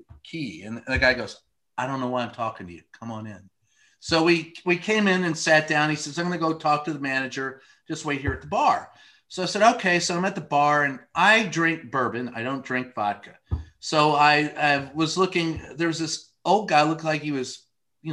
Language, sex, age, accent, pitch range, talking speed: English, male, 40-59, American, 135-195 Hz, 235 wpm